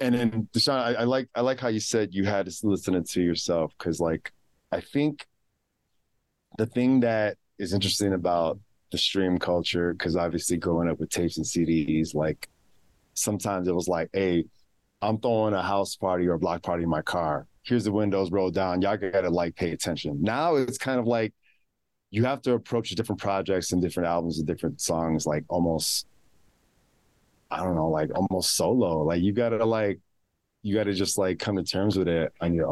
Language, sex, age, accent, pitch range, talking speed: English, male, 30-49, American, 80-110 Hz, 195 wpm